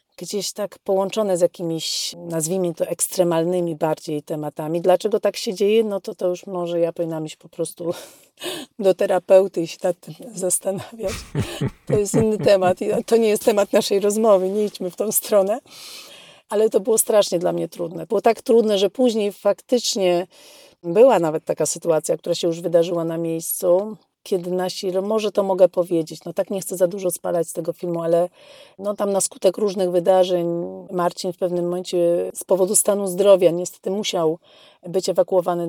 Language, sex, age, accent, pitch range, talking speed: Polish, female, 40-59, native, 170-200 Hz, 180 wpm